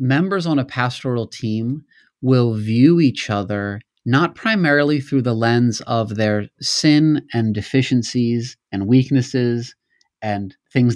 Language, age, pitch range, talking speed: English, 30-49, 110-135 Hz, 125 wpm